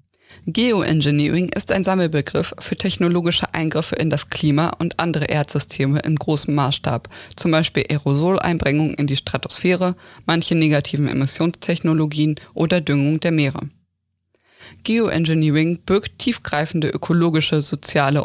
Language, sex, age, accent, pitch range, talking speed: German, female, 20-39, German, 140-175 Hz, 110 wpm